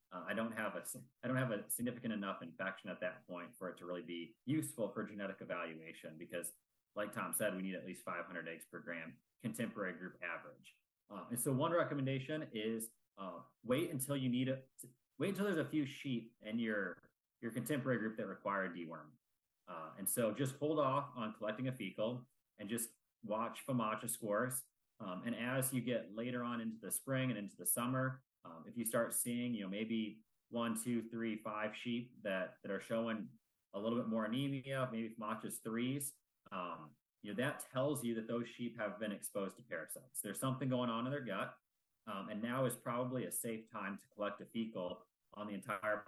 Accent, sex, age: American, male, 30-49